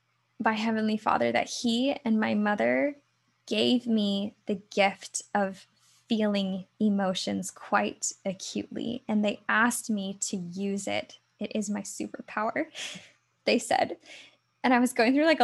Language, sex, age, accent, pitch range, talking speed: English, female, 10-29, American, 195-240 Hz, 140 wpm